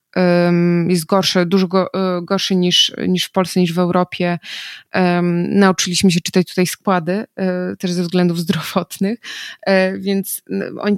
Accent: native